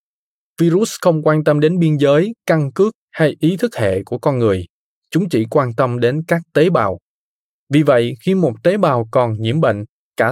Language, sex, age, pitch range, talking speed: Vietnamese, male, 20-39, 125-165 Hz, 200 wpm